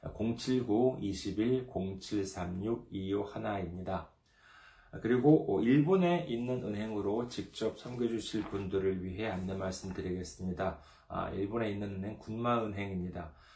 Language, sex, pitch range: Korean, male, 90-115 Hz